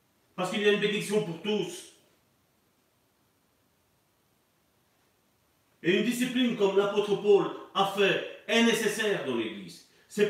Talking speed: 130 wpm